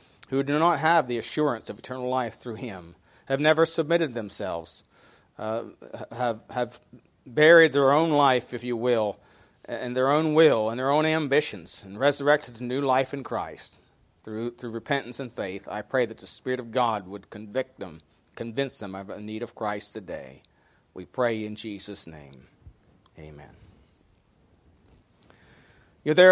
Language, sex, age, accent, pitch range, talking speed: English, male, 40-59, American, 110-140 Hz, 160 wpm